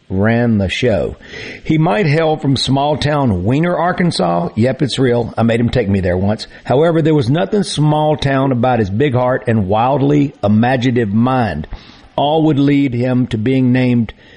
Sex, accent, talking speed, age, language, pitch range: male, American, 175 wpm, 50-69, English, 115-150 Hz